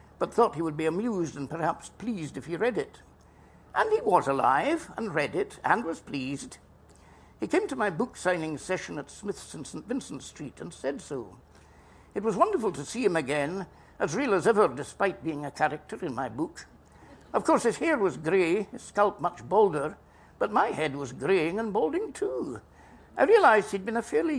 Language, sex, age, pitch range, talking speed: English, male, 60-79, 155-225 Hz, 200 wpm